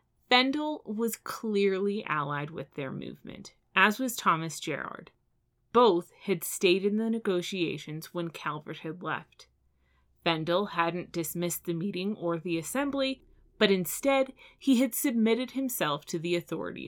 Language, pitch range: English, 160-220 Hz